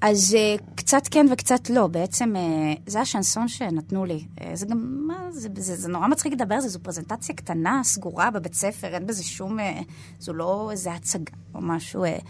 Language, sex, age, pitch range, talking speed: Hebrew, female, 20-39, 160-195 Hz, 170 wpm